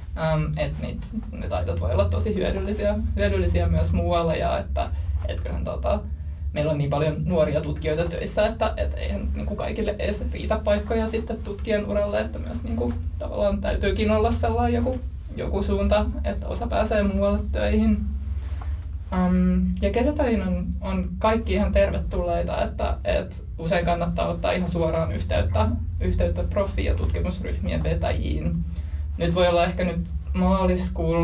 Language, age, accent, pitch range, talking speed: Finnish, 20-39, native, 75-90 Hz, 140 wpm